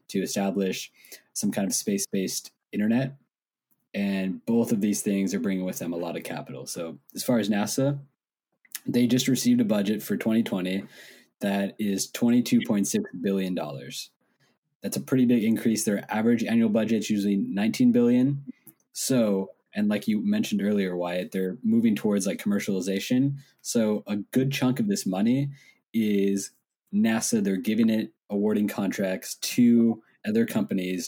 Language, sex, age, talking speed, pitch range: English, male, 20-39, 150 wpm, 95-140 Hz